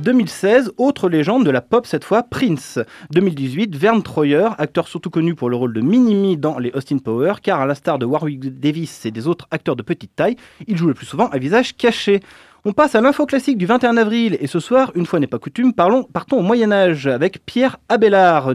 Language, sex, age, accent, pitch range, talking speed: French, male, 30-49, French, 145-210 Hz, 225 wpm